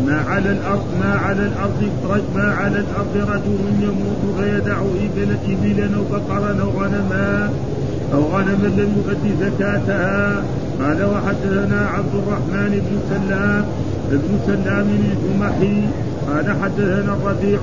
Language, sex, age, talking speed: Arabic, male, 50-69, 115 wpm